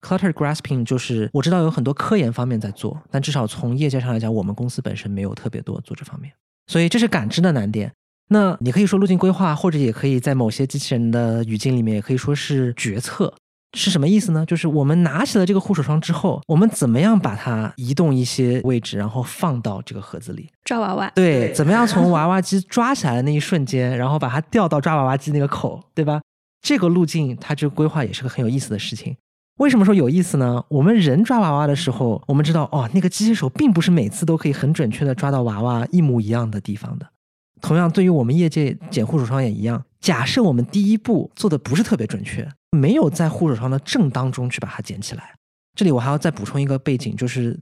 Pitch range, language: 125-175 Hz, Chinese